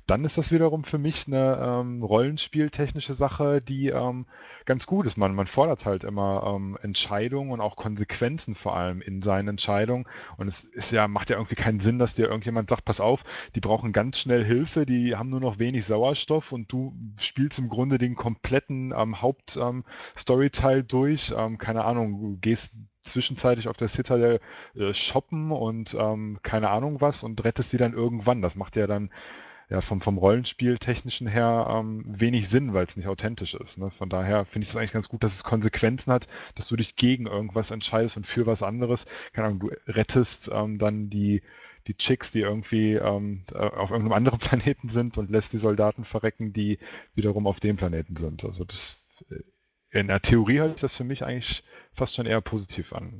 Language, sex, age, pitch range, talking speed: English, male, 30-49, 105-125 Hz, 195 wpm